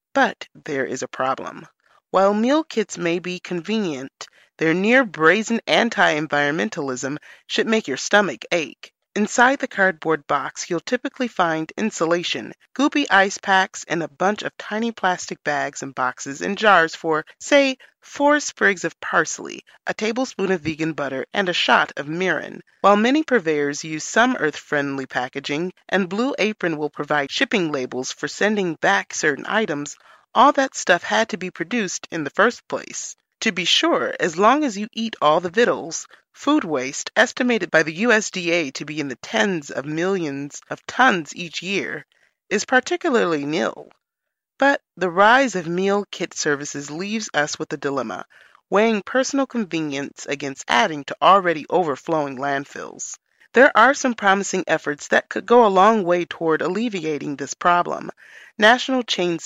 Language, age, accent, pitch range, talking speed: English, 30-49, American, 155-220 Hz, 155 wpm